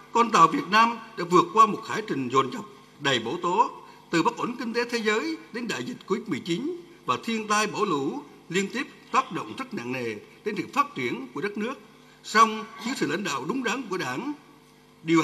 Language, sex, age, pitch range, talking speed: Vietnamese, male, 60-79, 170-240 Hz, 215 wpm